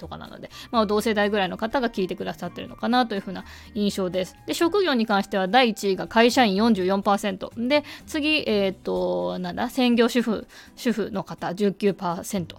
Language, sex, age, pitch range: Japanese, female, 20-39, 195-250 Hz